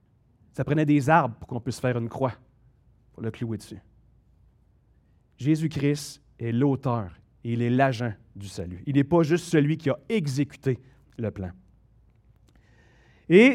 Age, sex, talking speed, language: 30-49, male, 145 wpm, French